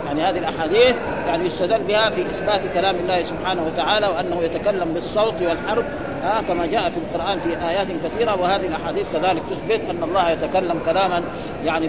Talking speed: 170 wpm